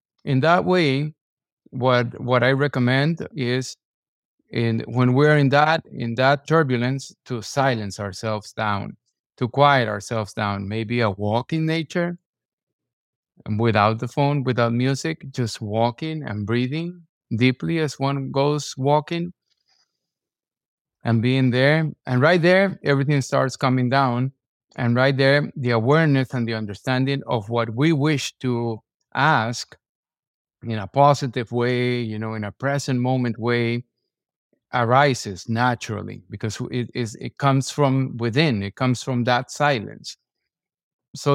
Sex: male